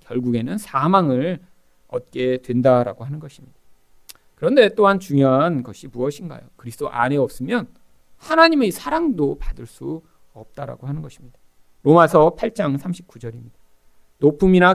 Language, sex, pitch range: Korean, male, 115-190 Hz